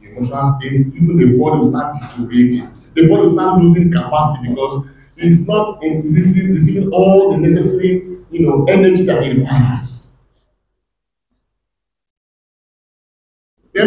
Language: English